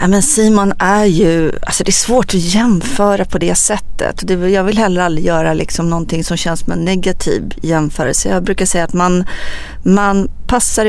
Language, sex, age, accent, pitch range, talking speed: English, female, 30-49, Swedish, 160-200 Hz, 185 wpm